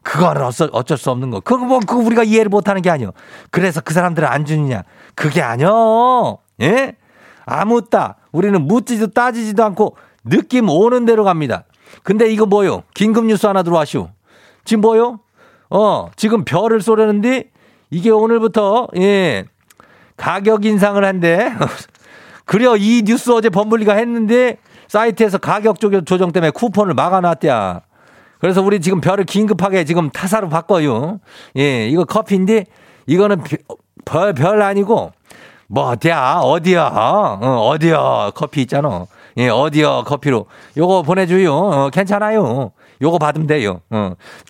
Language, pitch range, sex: Korean, 160-220 Hz, male